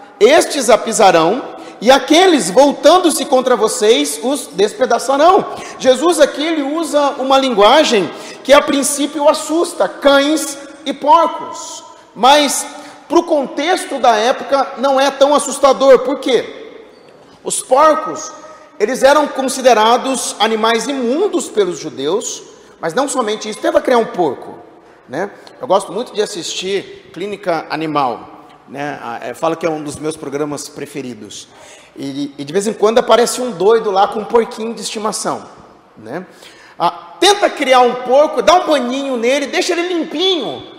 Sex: male